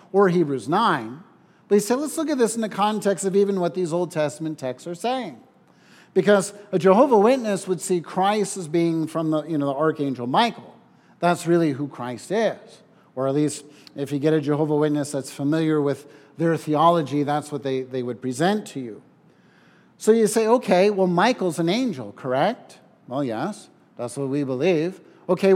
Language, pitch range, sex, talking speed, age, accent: English, 165-210 Hz, male, 190 wpm, 50-69, American